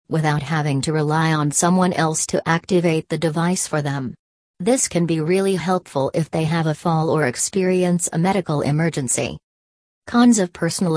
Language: English